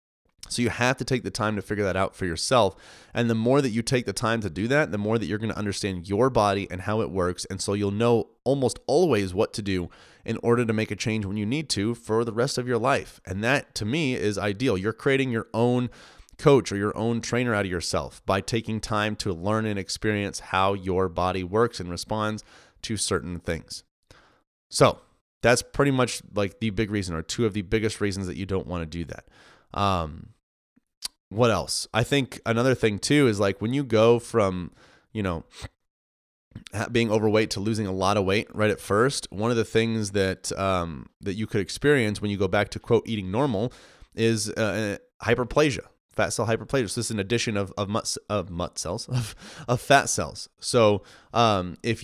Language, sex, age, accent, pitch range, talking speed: English, male, 30-49, American, 95-115 Hz, 215 wpm